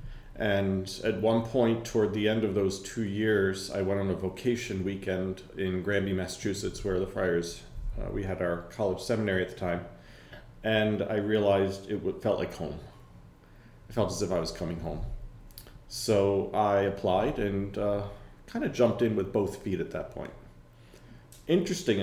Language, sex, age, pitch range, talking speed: English, male, 40-59, 85-110 Hz, 170 wpm